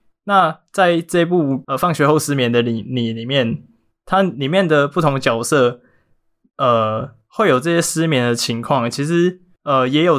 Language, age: Chinese, 20-39